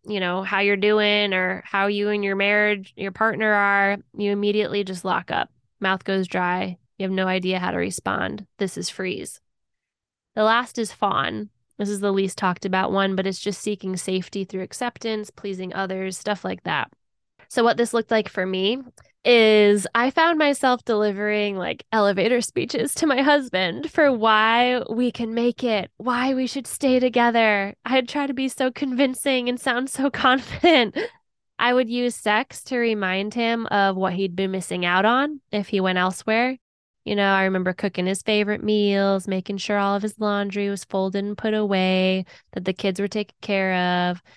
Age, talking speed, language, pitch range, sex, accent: 10-29, 185 wpm, English, 190-230 Hz, female, American